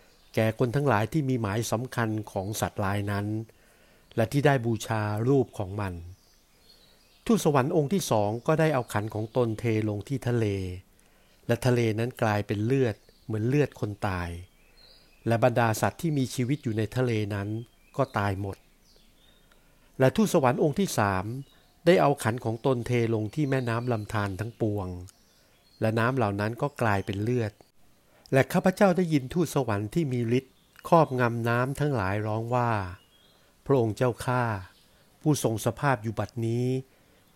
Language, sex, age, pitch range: Thai, male, 60-79, 105-130 Hz